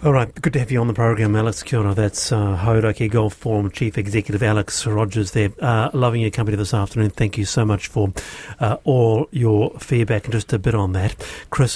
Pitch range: 110-140 Hz